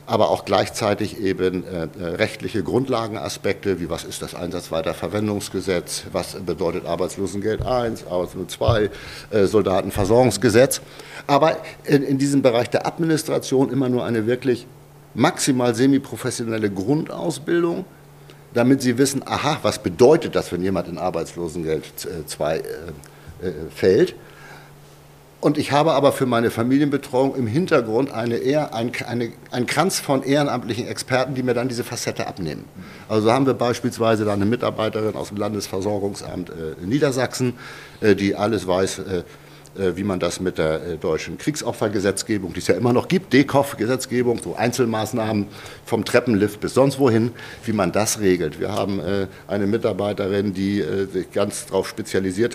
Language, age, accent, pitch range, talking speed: German, 60-79, German, 100-130 Hz, 135 wpm